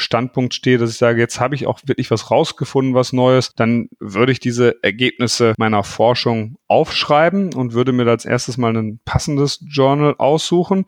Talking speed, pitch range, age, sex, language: 175 wpm, 115-135 Hz, 40-59, male, German